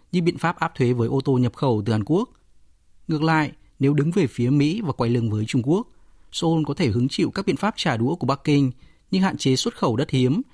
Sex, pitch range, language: male, 120-155 Hz, Vietnamese